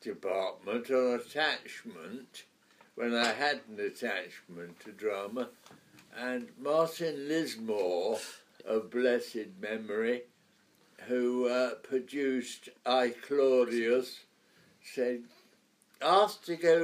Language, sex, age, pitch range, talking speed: English, male, 60-79, 125-155 Hz, 90 wpm